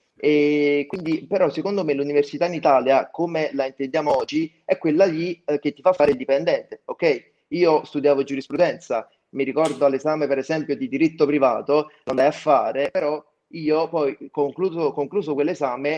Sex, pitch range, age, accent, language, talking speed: male, 135-160 Hz, 30-49, native, Italian, 160 wpm